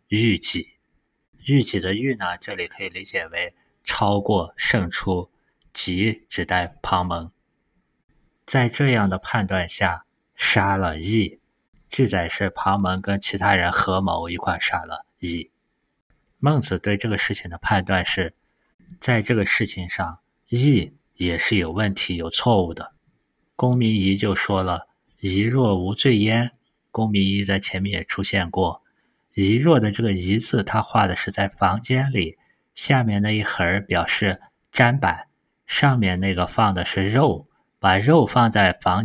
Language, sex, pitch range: Chinese, male, 95-115 Hz